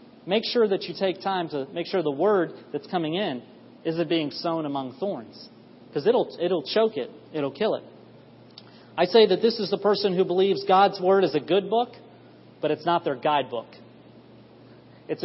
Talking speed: 190 wpm